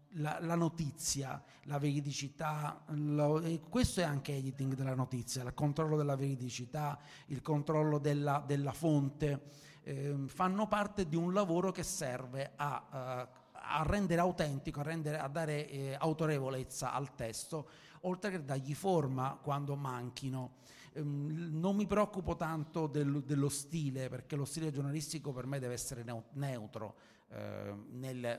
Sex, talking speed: male, 145 wpm